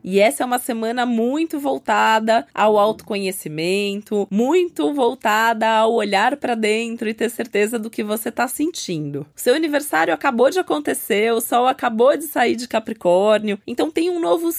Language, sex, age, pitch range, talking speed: Portuguese, female, 20-39, 200-250 Hz, 160 wpm